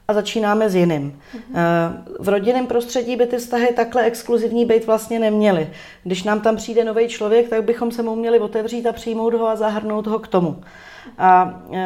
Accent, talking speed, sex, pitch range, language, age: native, 180 wpm, female, 185-220 Hz, Czech, 30-49